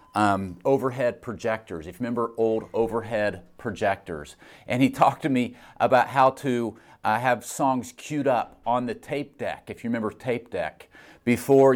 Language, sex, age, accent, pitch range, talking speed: English, male, 40-59, American, 100-125 Hz, 165 wpm